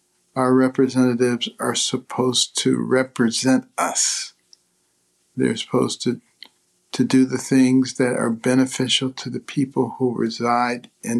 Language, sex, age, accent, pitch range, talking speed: English, male, 60-79, American, 125-145 Hz, 125 wpm